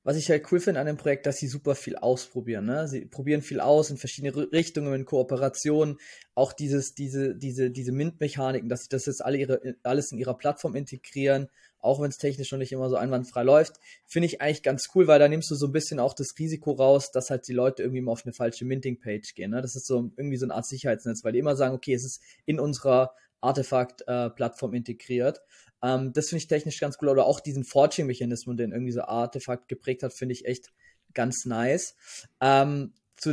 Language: German